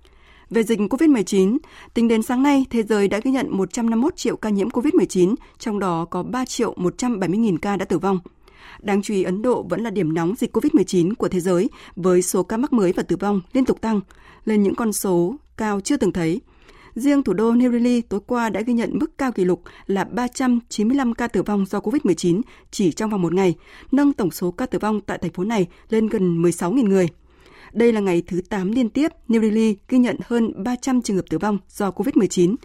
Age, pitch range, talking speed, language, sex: 20-39, 185-245 Hz, 220 wpm, Vietnamese, female